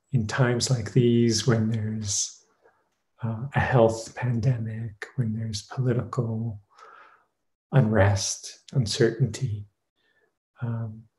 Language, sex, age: English, male, 40-59